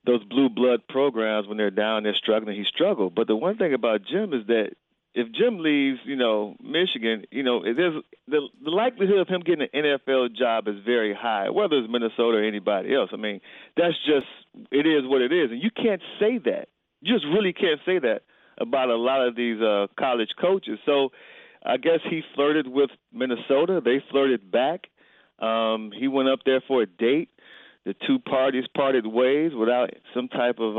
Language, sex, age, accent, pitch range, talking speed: English, male, 40-59, American, 115-160 Hz, 195 wpm